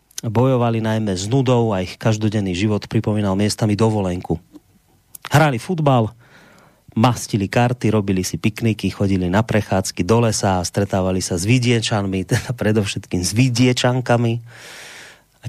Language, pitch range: Slovak, 105-125 Hz